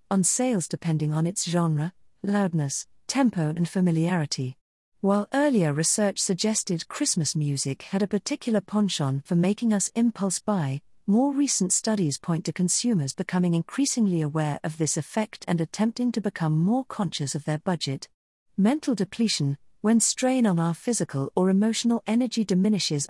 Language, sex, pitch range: English, female, 160-220 Hz